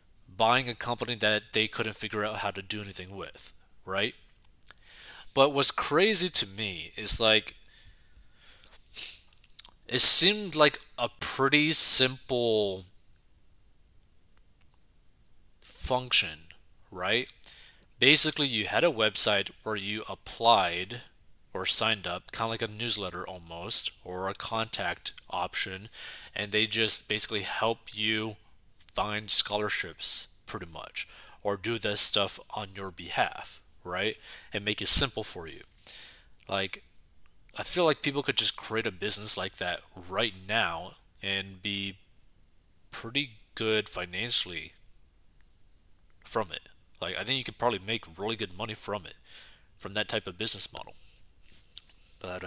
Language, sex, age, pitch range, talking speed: English, male, 20-39, 95-115 Hz, 130 wpm